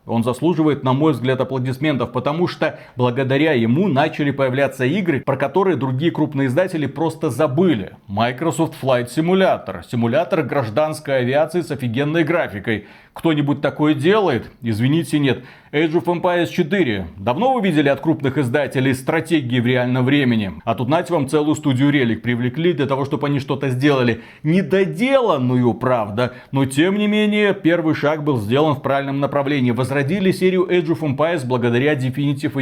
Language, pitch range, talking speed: Russian, 130-165 Hz, 150 wpm